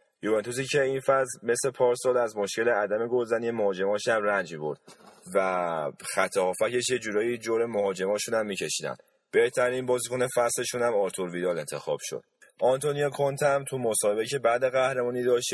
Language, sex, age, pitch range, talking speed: Persian, male, 30-49, 110-130 Hz, 145 wpm